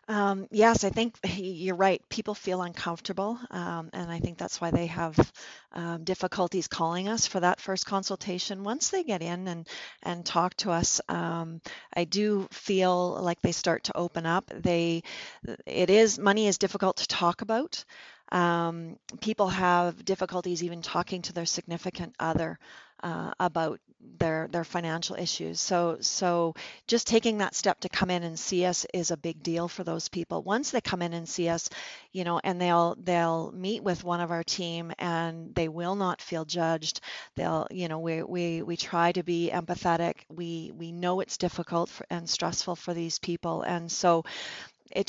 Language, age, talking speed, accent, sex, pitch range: English, 40-59, 180 wpm, American, female, 170-190 Hz